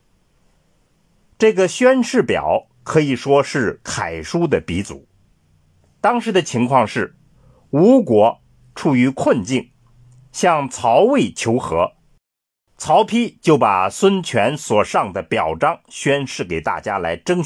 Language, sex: Chinese, male